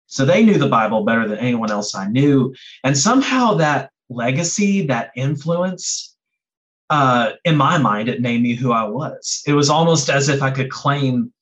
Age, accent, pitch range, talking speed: 30-49, American, 115-160 Hz, 185 wpm